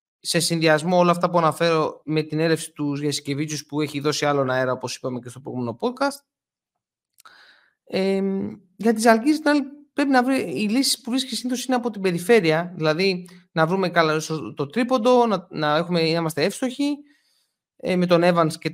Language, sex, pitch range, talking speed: Greek, male, 155-240 Hz, 180 wpm